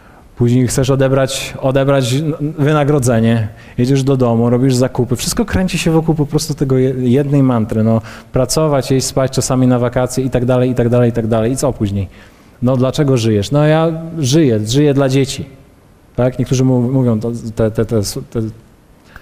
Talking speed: 165 wpm